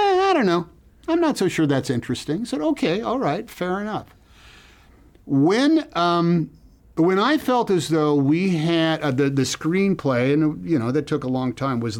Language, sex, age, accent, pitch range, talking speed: English, male, 50-69, American, 110-150 Hz, 190 wpm